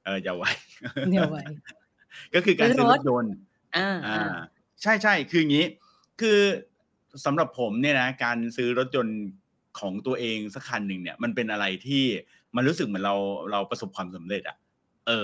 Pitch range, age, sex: 110-155 Hz, 30-49, male